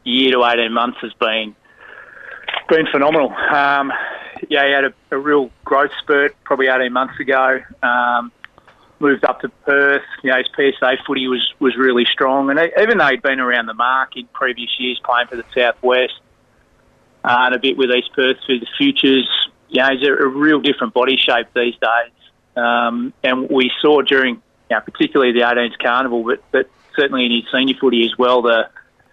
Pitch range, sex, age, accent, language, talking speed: 125-140 Hz, male, 30-49, Australian, English, 175 wpm